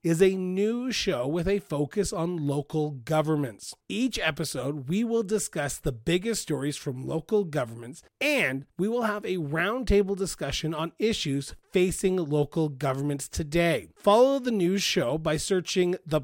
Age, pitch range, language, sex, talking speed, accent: 30-49, 140-185 Hz, English, male, 150 wpm, American